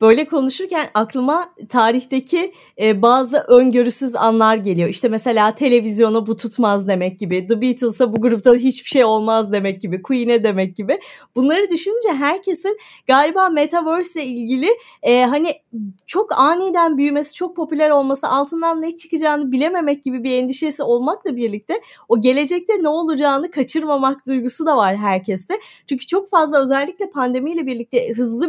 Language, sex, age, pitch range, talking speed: Turkish, female, 30-49, 245-330 Hz, 145 wpm